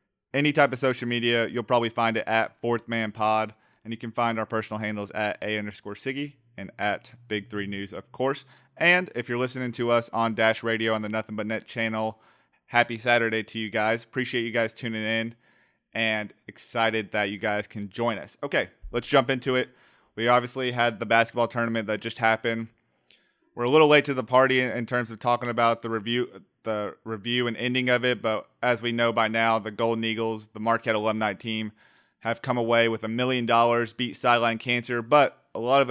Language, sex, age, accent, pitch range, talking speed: English, male, 30-49, American, 110-125 Hz, 210 wpm